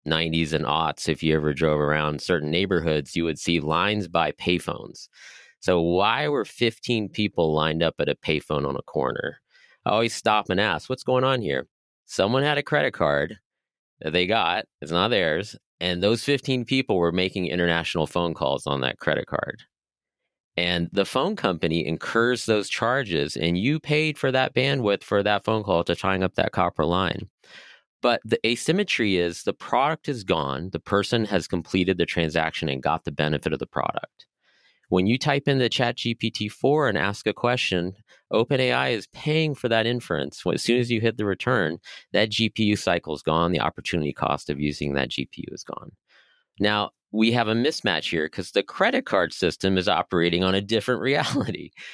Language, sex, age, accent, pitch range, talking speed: English, male, 30-49, American, 80-115 Hz, 185 wpm